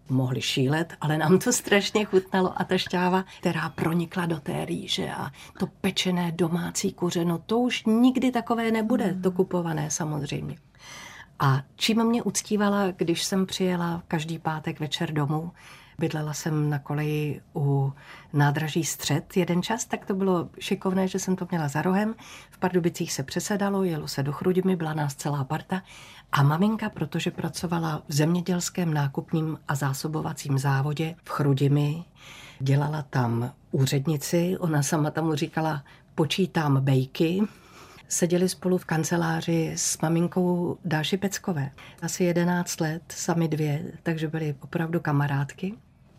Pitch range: 150-185 Hz